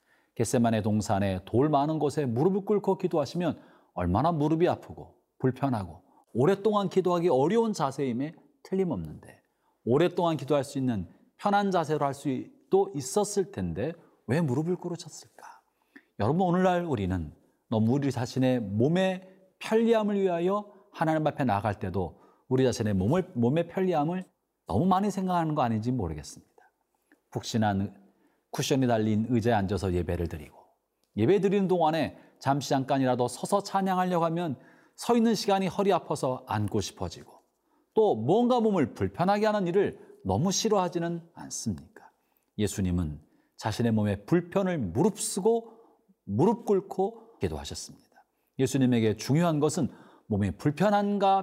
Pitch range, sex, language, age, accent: 120-195 Hz, male, Korean, 40-59, native